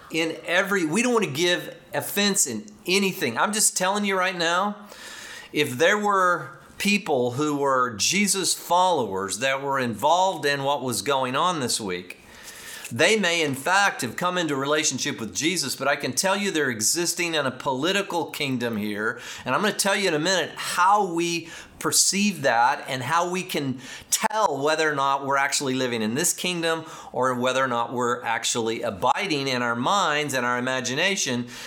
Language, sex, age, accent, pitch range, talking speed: English, male, 40-59, American, 125-175 Hz, 180 wpm